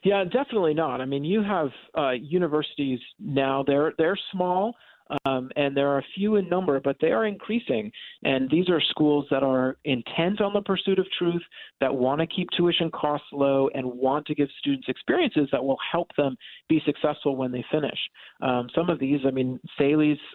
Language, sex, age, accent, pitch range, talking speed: English, male, 40-59, American, 135-160 Hz, 195 wpm